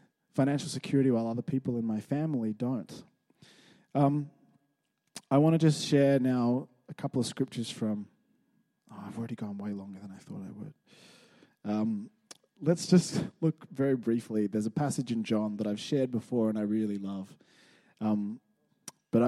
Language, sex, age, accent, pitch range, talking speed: English, male, 20-39, Australian, 115-165 Hz, 160 wpm